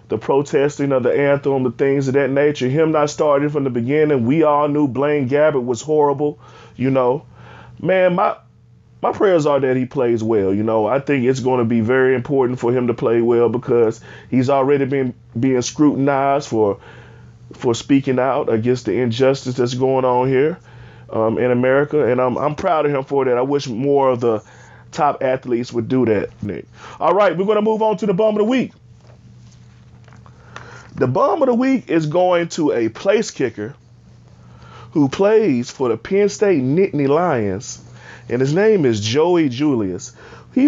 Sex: male